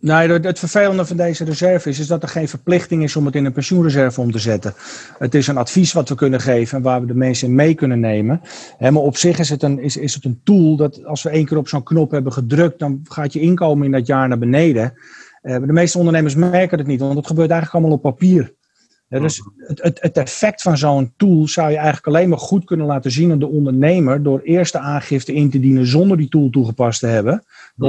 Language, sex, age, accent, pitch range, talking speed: Dutch, male, 40-59, Dutch, 130-165 Hz, 235 wpm